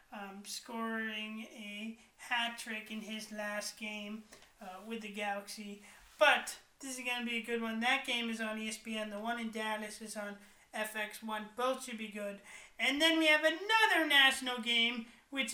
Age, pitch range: 30-49, 215-265 Hz